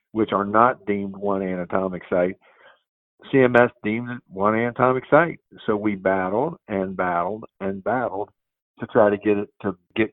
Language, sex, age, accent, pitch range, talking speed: English, male, 50-69, American, 100-120 Hz, 155 wpm